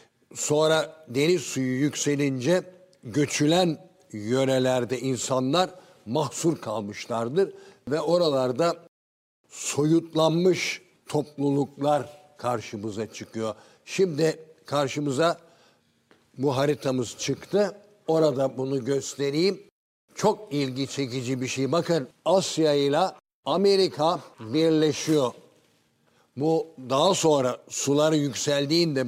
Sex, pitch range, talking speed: male, 130-170 Hz, 80 wpm